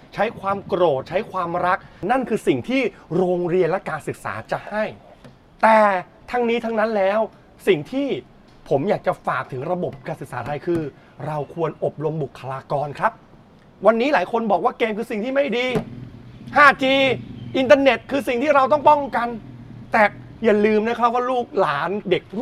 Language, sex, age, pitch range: Thai, male, 30-49, 160-225 Hz